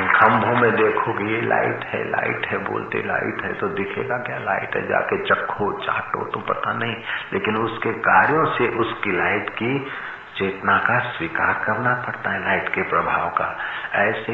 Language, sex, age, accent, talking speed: Hindi, male, 50-69, native, 165 wpm